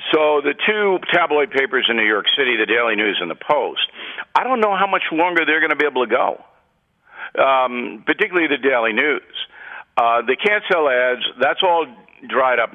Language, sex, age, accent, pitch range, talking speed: English, male, 50-69, American, 135-195 Hz, 200 wpm